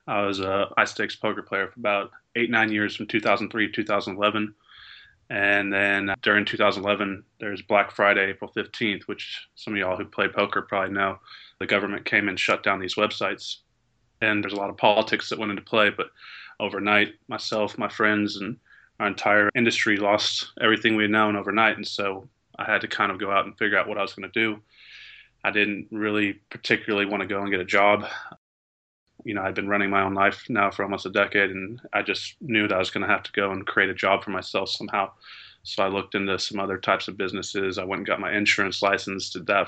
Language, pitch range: English, 100-105 Hz